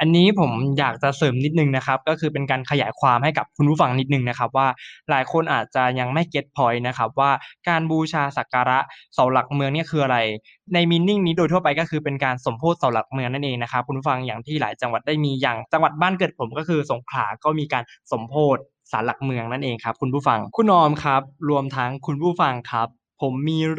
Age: 20-39